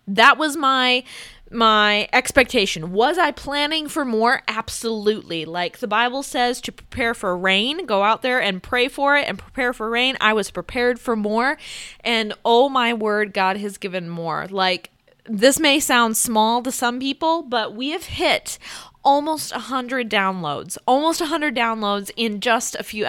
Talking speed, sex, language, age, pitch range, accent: 175 wpm, female, English, 20-39, 210-265 Hz, American